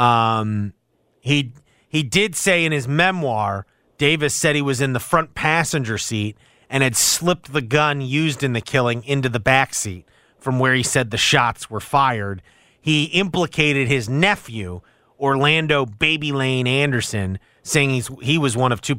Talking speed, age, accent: 170 wpm, 30-49, American